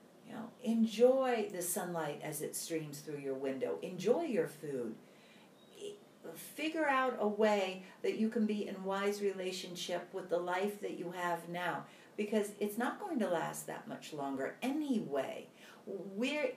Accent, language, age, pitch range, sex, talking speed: American, English, 60-79, 160-220 Hz, female, 150 wpm